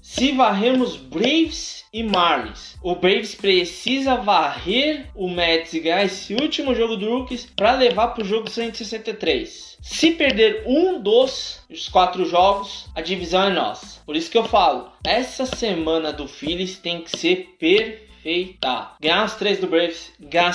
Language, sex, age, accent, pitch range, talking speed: Portuguese, male, 20-39, Brazilian, 175-230 Hz, 160 wpm